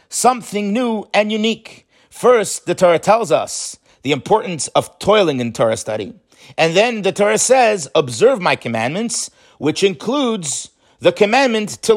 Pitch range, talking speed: 135-200 Hz, 145 wpm